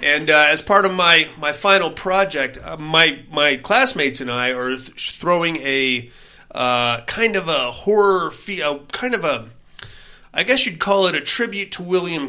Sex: male